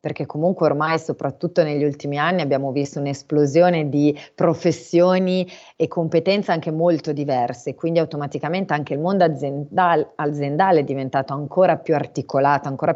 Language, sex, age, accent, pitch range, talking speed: Italian, female, 30-49, native, 145-170 Hz, 135 wpm